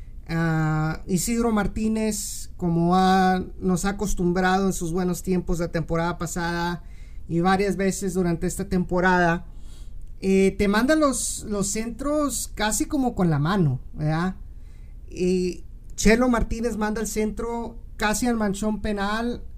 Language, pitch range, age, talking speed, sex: Spanish, 175-215 Hz, 40-59, 130 wpm, male